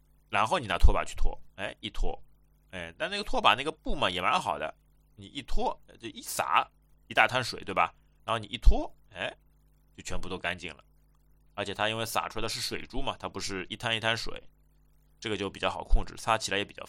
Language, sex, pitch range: Chinese, male, 90-110 Hz